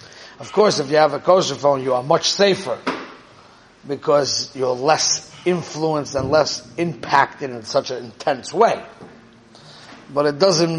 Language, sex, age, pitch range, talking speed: English, male, 30-49, 130-155 Hz, 150 wpm